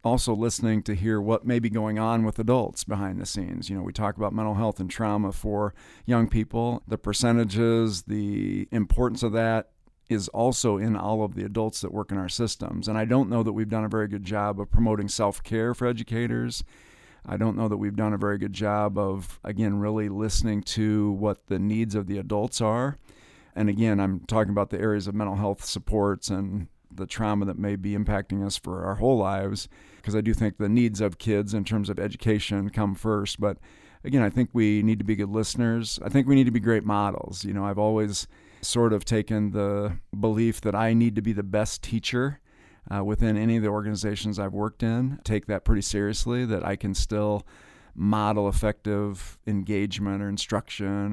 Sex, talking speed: male, 205 wpm